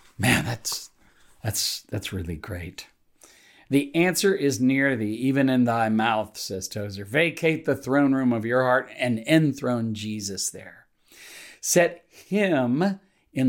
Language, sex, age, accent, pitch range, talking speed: English, male, 50-69, American, 105-150 Hz, 140 wpm